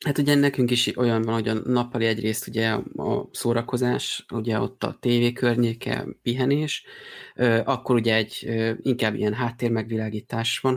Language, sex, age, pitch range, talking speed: Hungarian, male, 30-49, 115-135 Hz, 145 wpm